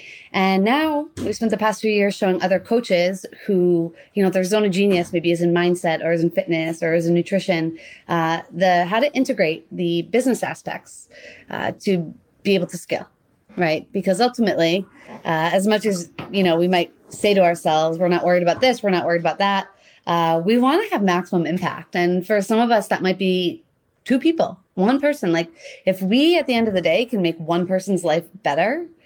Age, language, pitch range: 30-49, English, 175-215 Hz